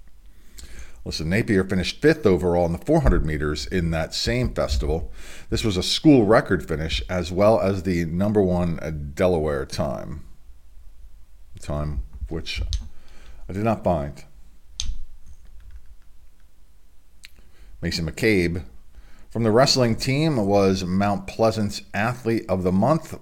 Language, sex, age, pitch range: English, male, 50-69, 75-100 Hz